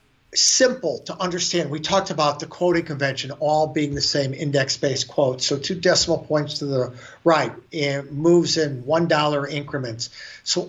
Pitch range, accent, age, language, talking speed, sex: 145-190 Hz, American, 50-69, English, 165 wpm, male